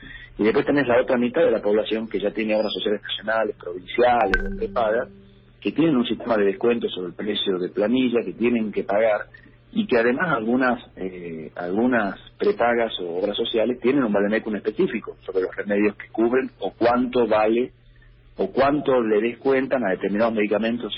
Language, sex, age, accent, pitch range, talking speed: Spanish, male, 40-59, Argentinian, 105-125 Hz, 170 wpm